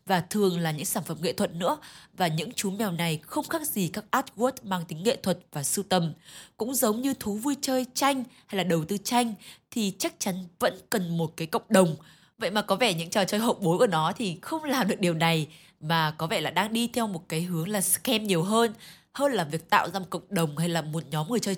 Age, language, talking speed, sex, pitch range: 20-39, Vietnamese, 255 wpm, female, 180-235 Hz